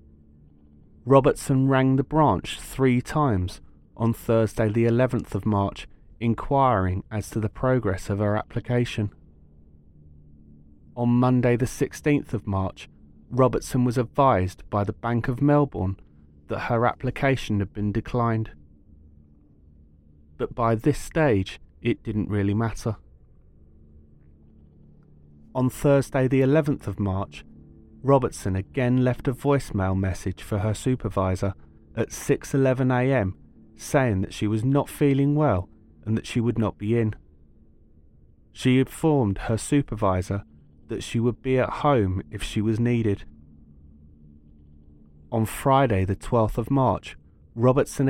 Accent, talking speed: British, 125 wpm